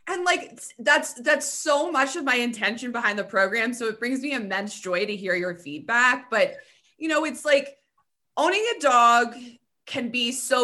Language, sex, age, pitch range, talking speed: English, female, 20-39, 210-275 Hz, 185 wpm